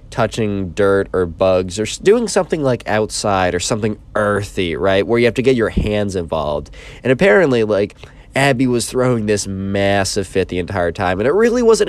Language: English